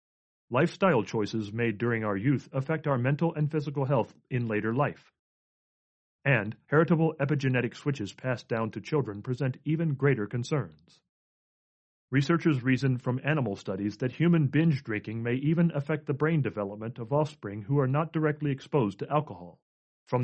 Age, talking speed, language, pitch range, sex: 40-59, 155 wpm, English, 115-145 Hz, male